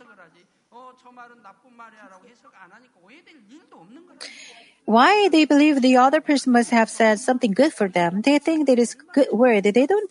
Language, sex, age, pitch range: Korean, female, 40-59, 215-270 Hz